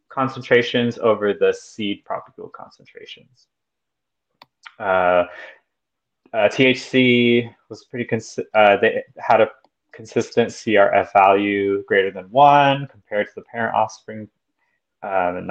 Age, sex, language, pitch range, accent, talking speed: 20-39, male, English, 100-130 Hz, American, 110 wpm